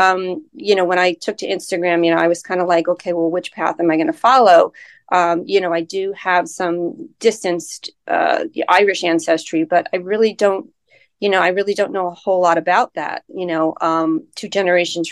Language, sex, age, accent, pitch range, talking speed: English, female, 30-49, American, 170-195 Hz, 210 wpm